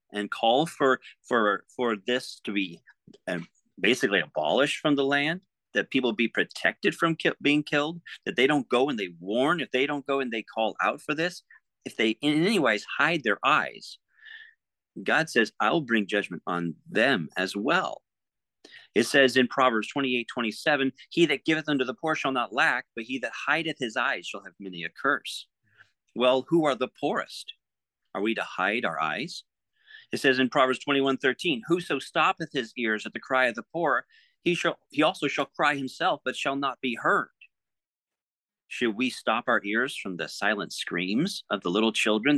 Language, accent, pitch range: English, American, 110-150 Hz